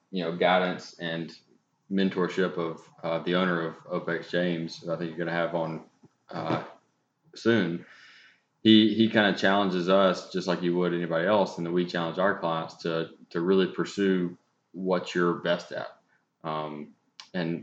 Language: English